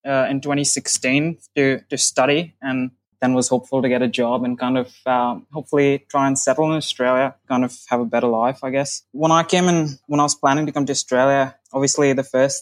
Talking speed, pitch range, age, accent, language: 225 wpm, 130-150 Hz, 20-39, Australian, English